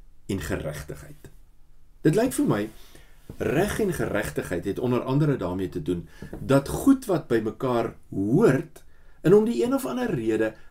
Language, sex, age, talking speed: English, male, 50-69, 155 wpm